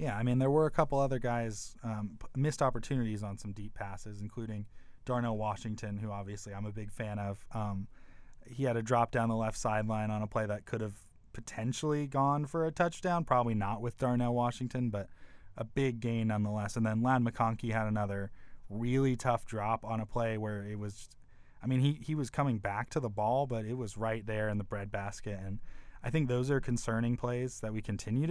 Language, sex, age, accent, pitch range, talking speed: English, male, 20-39, American, 105-125 Hz, 215 wpm